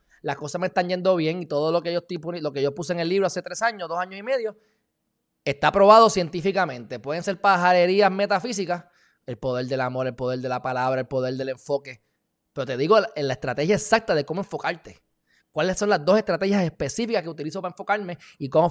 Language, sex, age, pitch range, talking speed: Spanish, male, 20-39, 140-190 Hz, 210 wpm